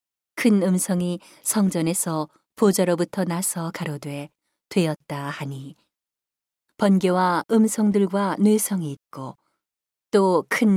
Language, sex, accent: Korean, female, native